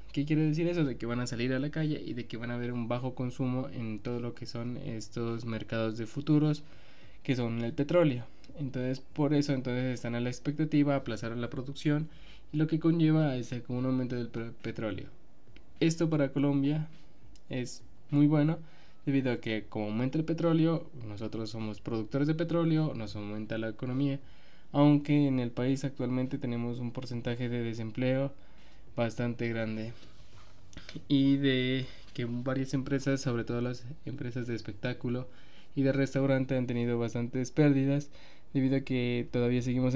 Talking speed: 165 wpm